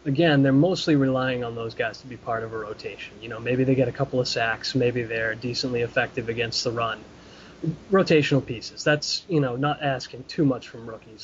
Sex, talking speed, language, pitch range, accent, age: male, 215 wpm, English, 120-140 Hz, American, 20-39